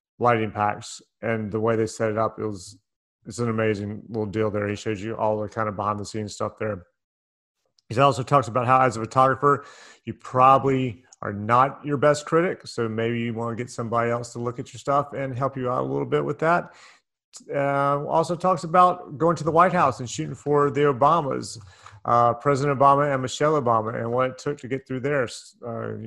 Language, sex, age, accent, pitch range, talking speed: English, male, 30-49, American, 115-145 Hz, 220 wpm